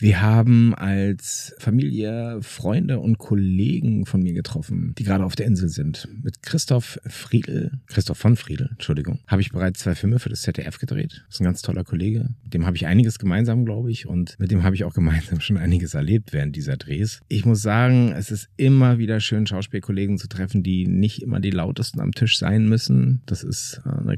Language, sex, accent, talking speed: German, male, German, 205 wpm